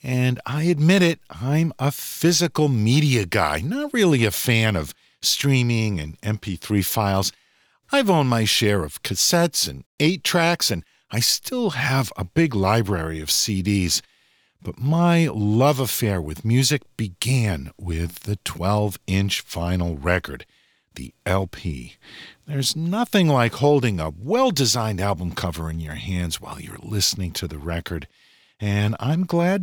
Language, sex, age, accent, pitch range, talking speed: English, male, 50-69, American, 95-155 Hz, 140 wpm